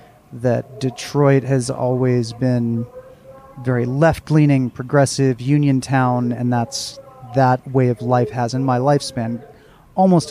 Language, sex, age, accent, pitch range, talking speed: English, male, 30-49, American, 125-145 Hz, 120 wpm